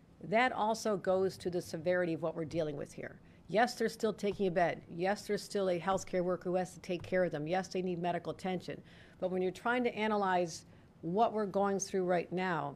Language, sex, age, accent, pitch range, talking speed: English, female, 50-69, American, 165-200 Hz, 225 wpm